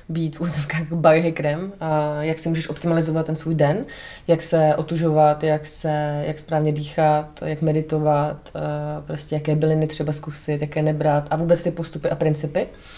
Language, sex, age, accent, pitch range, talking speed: Czech, female, 20-39, native, 155-170 Hz, 155 wpm